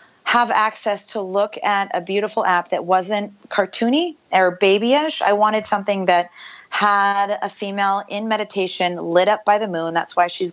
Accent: American